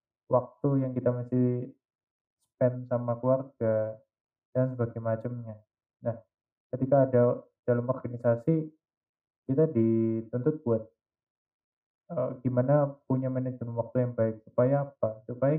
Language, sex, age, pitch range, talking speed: Indonesian, male, 20-39, 115-130 Hz, 110 wpm